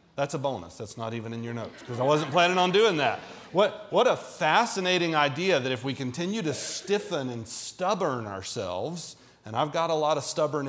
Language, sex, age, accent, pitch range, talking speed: English, male, 40-59, American, 140-170 Hz, 210 wpm